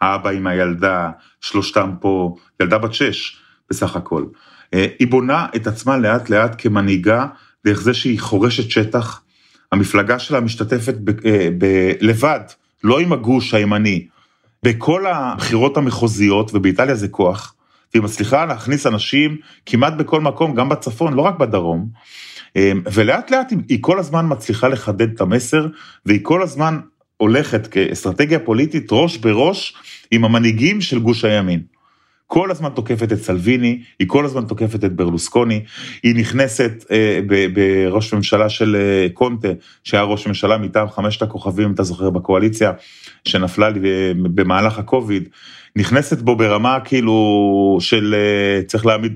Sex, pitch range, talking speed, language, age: male, 100-130 Hz, 135 wpm, Hebrew, 30-49